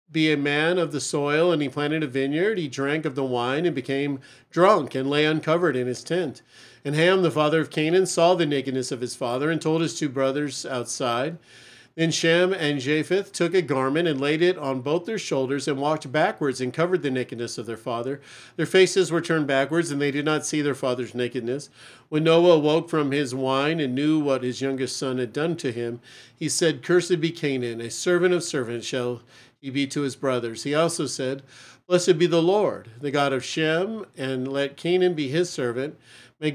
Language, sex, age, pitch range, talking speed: English, male, 50-69, 130-160 Hz, 210 wpm